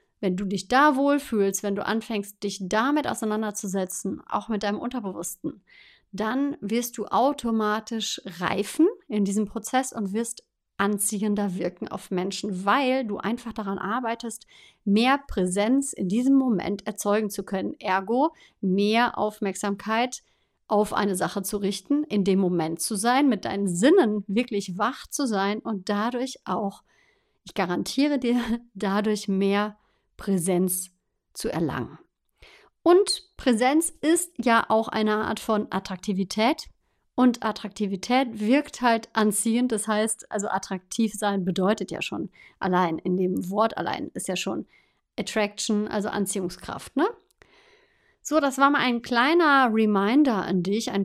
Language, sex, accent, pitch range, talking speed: German, female, German, 200-250 Hz, 140 wpm